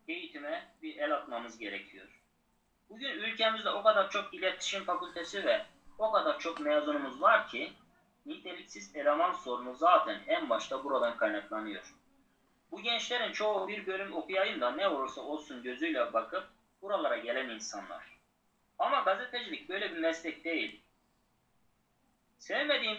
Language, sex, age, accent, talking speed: Turkish, male, 30-49, native, 130 wpm